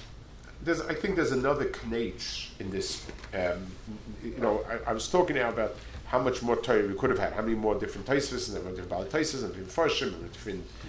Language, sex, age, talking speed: English, male, 50-69, 215 wpm